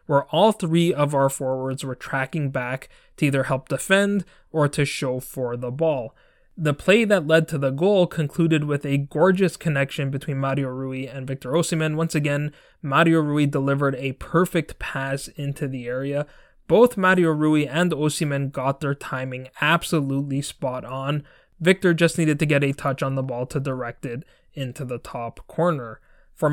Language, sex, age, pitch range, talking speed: English, male, 20-39, 135-165 Hz, 175 wpm